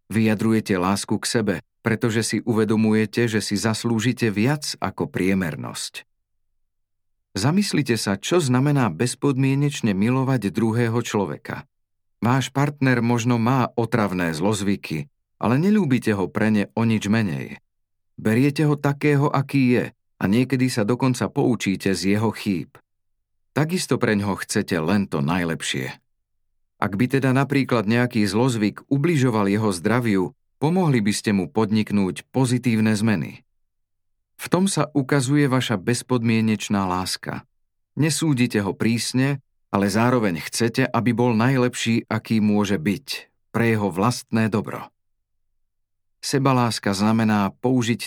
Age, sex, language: 40-59, male, Slovak